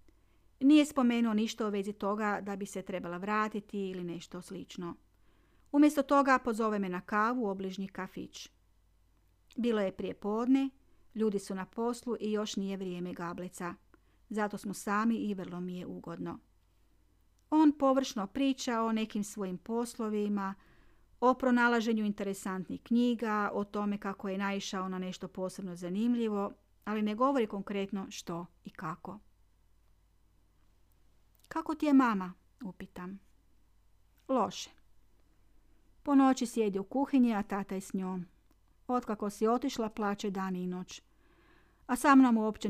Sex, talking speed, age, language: female, 135 wpm, 40-59, Croatian